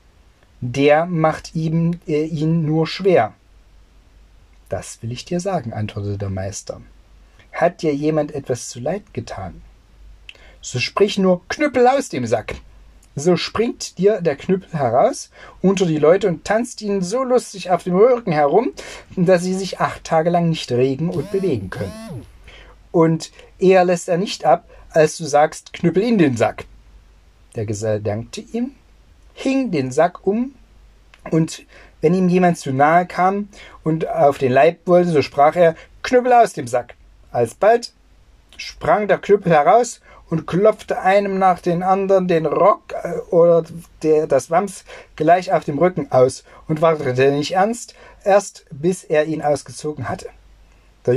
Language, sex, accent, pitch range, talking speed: German, male, German, 125-185 Hz, 155 wpm